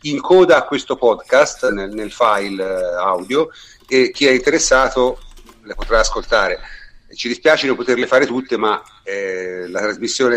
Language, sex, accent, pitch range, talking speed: Italian, male, native, 110-155 Hz, 150 wpm